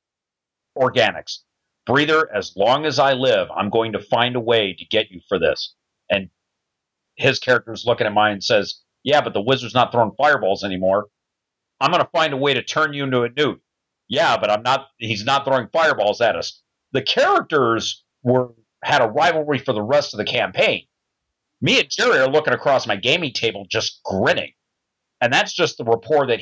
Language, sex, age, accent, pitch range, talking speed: English, male, 50-69, American, 110-145 Hz, 195 wpm